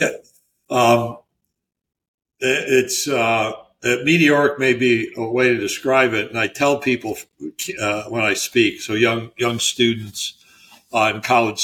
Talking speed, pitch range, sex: 140 wpm, 105-125 Hz, male